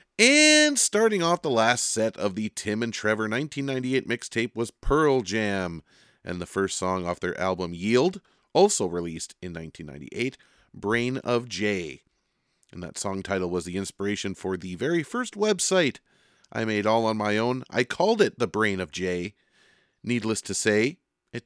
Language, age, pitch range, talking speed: English, 30-49, 90-120 Hz, 170 wpm